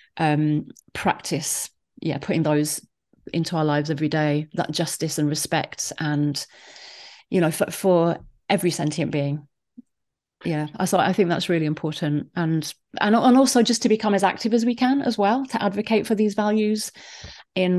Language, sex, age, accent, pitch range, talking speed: English, female, 30-49, British, 155-190 Hz, 165 wpm